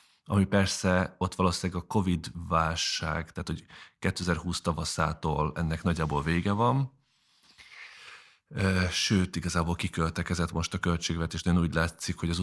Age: 30-49